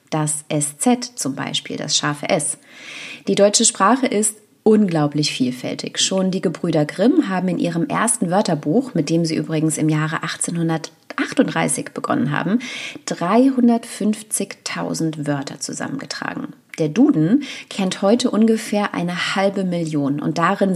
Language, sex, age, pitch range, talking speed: German, female, 30-49, 165-245 Hz, 125 wpm